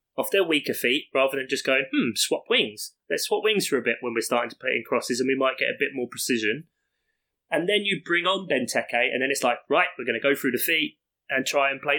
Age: 20-39